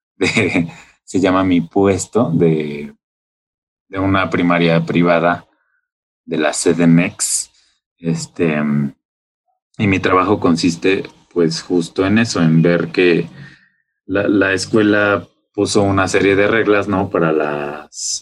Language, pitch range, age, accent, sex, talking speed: Spanish, 85-110 Hz, 30-49, Mexican, male, 120 wpm